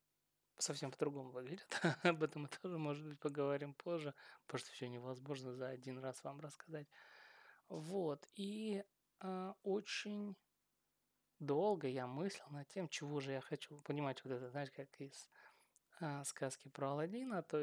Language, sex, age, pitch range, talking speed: Russian, male, 20-39, 140-175 Hz, 150 wpm